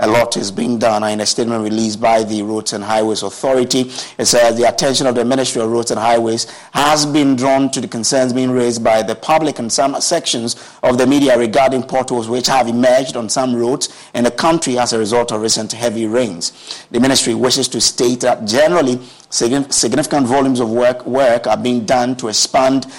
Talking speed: 205 wpm